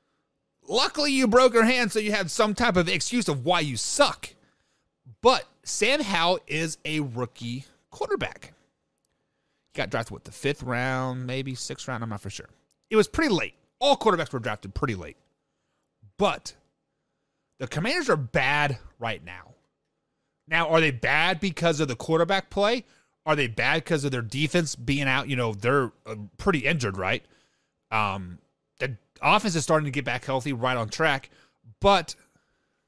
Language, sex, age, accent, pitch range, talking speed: English, male, 30-49, American, 135-195 Hz, 165 wpm